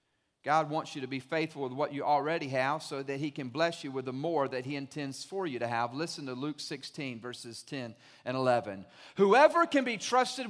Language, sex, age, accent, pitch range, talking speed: English, male, 40-59, American, 125-165 Hz, 225 wpm